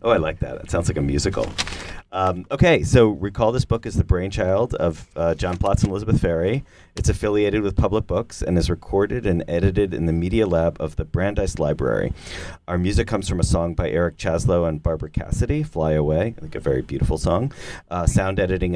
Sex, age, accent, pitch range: male, 30-49, American, 80-105 Hz